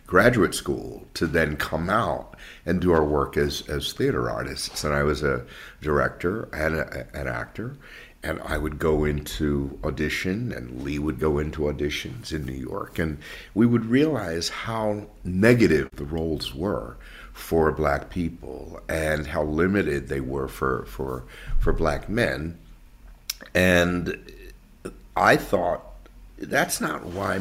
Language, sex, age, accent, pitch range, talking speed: English, male, 60-79, American, 75-90 Hz, 140 wpm